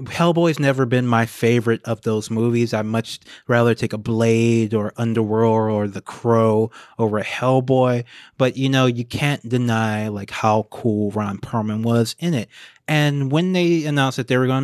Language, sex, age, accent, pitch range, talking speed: English, male, 30-49, American, 120-155 Hz, 180 wpm